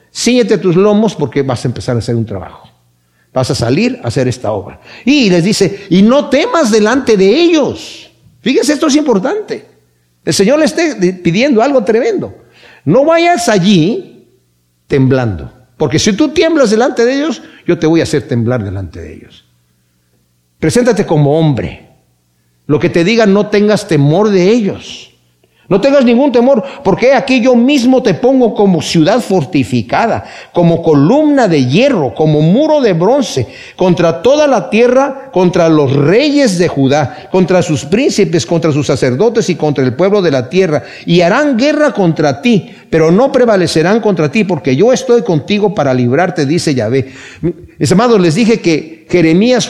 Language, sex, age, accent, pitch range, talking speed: Spanish, male, 50-69, Mexican, 140-235 Hz, 165 wpm